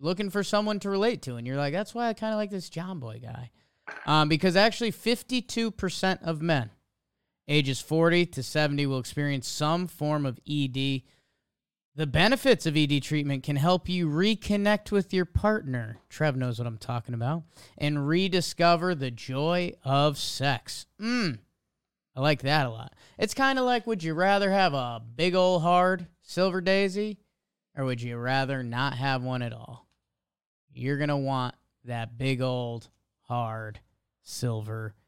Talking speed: 165 wpm